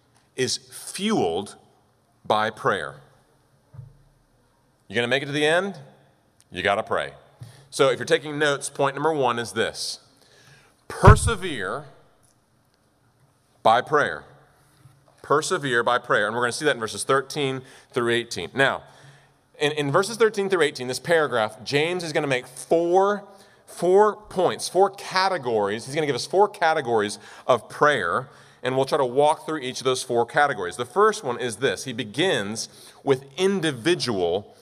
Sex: male